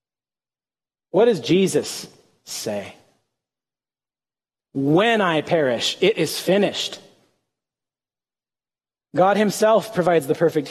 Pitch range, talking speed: 135-180 Hz, 85 wpm